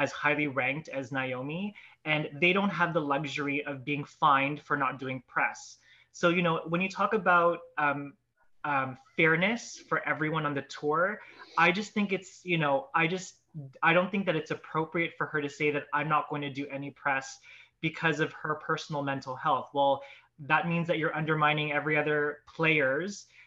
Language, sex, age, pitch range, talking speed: English, male, 20-39, 145-175 Hz, 190 wpm